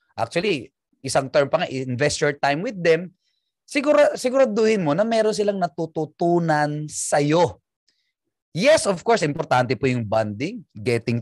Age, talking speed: 20-39, 140 wpm